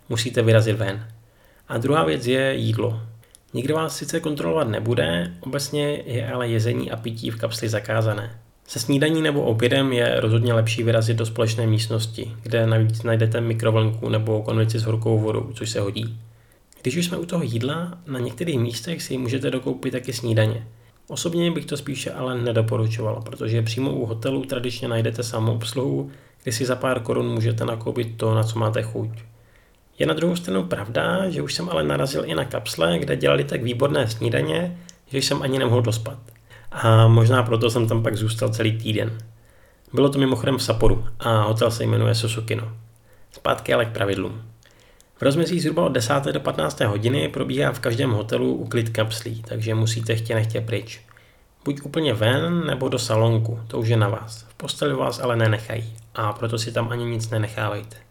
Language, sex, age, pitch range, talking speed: Czech, male, 20-39, 110-130 Hz, 180 wpm